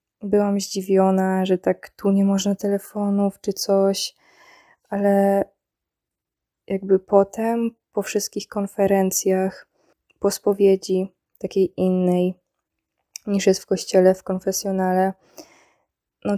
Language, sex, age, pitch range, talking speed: Polish, female, 20-39, 190-210 Hz, 100 wpm